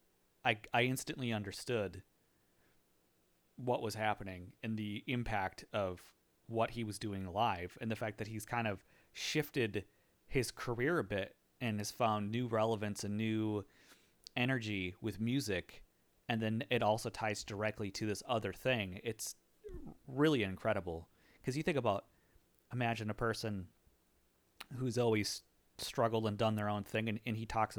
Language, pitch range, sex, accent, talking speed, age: English, 100-115 Hz, male, American, 150 wpm, 30-49